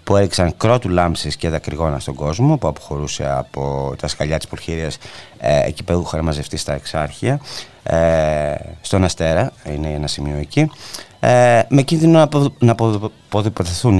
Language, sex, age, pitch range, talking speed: Greek, male, 30-49, 80-115 Hz, 135 wpm